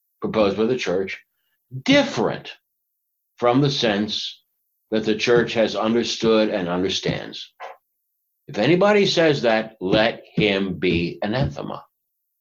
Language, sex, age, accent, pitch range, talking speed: English, male, 60-79, American, 100-135 Hz, 110 wpm